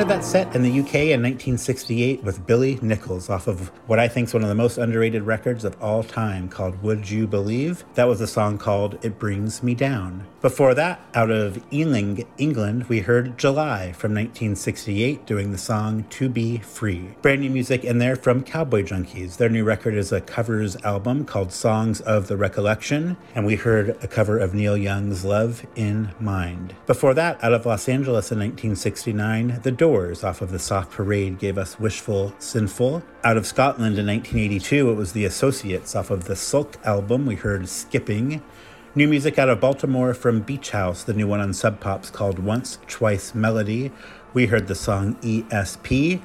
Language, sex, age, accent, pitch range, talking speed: English, male, 40-59, American, 100-125 Hz, 190 wpm